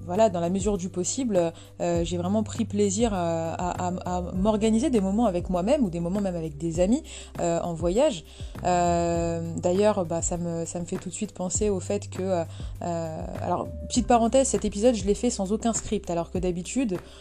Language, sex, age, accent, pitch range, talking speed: French, female, 20-39, French, 170-215 Hz, 205 wpm